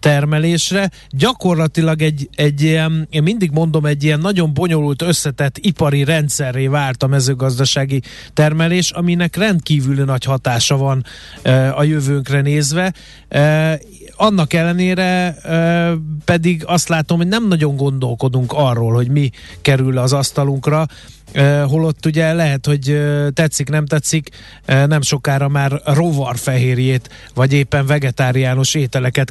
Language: Hungarian